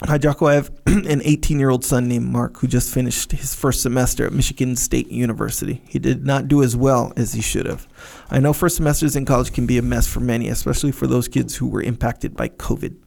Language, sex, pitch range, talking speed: English, male, 120-140 Hz, 240 wpm